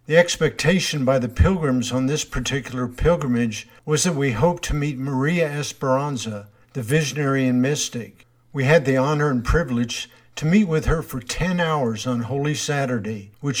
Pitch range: 120-150 Hz